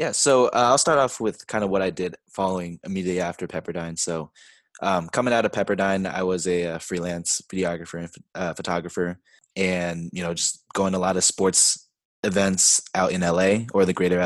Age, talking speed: 20-39, 205 wpm